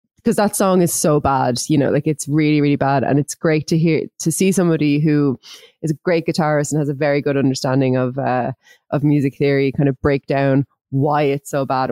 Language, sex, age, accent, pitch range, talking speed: English, female, 20-39, Irish, 140-175 Hz, 225 wpm